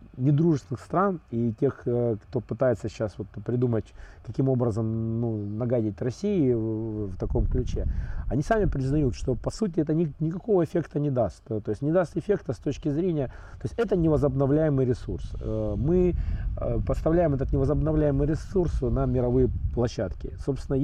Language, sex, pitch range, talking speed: Russian, male, 110-145 Hz, 145 wpm